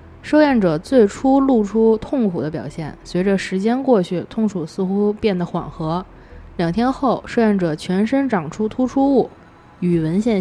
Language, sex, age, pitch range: Chinese, female, 20-39, 165-225 Hz